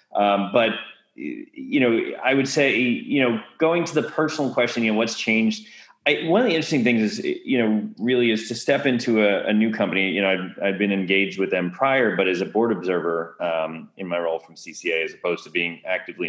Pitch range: 100-125 Hz